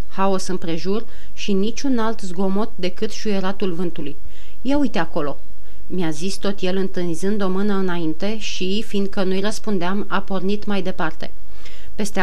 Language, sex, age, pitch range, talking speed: Romanian, female, 30-49, 185-230 Hz, 140 wpm